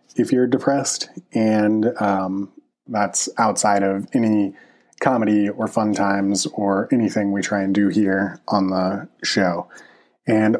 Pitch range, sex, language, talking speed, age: 100-110 Hz, male, English, 135 wpm, 30-49